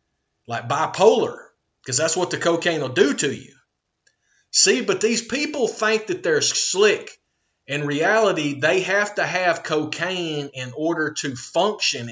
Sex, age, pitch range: male, 30-49, 135-200 Hz